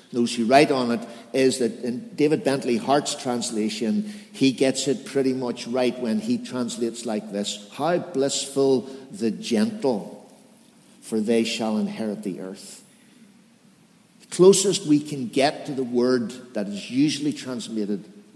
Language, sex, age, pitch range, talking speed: English, male, 60-79, 125-195 Hz, 145 wpm